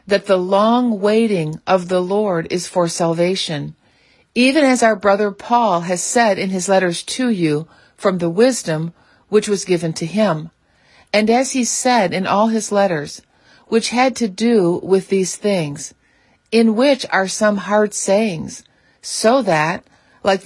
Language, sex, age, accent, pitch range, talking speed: English, female, 50-69, American, 170-215 Hz, 160 wpm